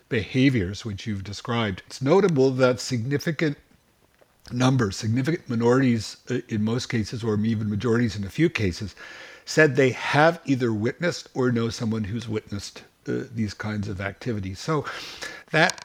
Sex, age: male, 60-79